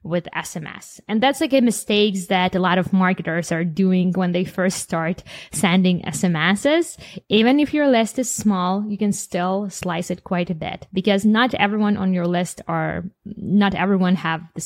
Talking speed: 185 wpm